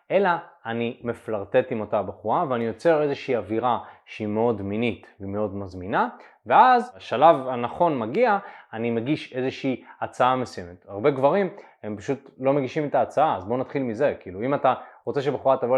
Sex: male